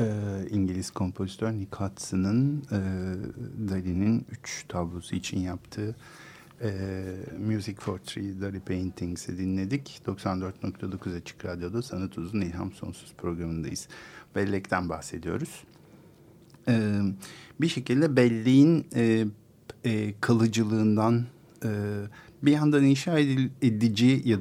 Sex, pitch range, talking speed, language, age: male, 95-125 Hz, 100 wpm, Turkish, 50-69